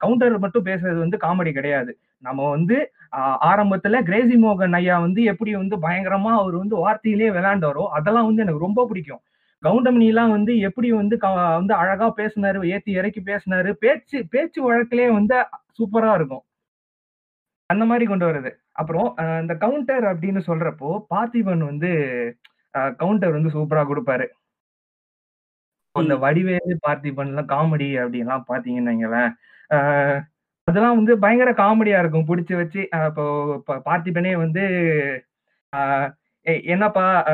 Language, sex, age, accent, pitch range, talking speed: Tamil, male, 20-39, native, 155-220 Hz, 125 wpm